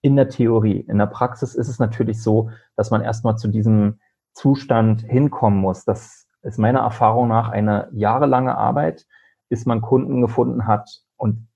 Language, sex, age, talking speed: German, male, 30-49, 165 wpm